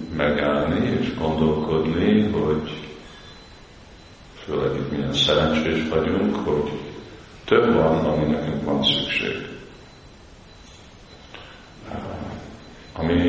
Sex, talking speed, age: male, 75 wpm, 50-69